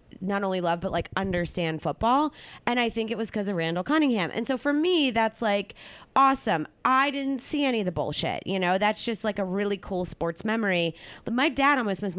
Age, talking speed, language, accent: 20-39, 215 wpm, English, American